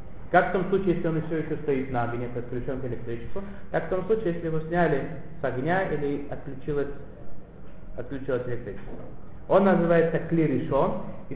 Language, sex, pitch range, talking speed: Russian, male, 125-165 Hz, 170 wpm